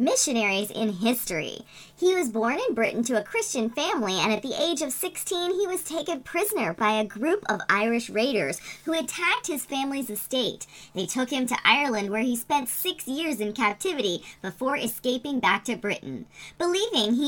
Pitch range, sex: 215-310 Hz, male